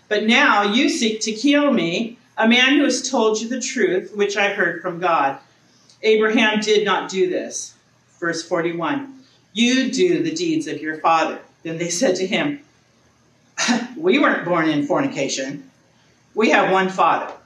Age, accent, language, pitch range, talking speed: 50-69, American, English, 175-240 Hz, 165 wpm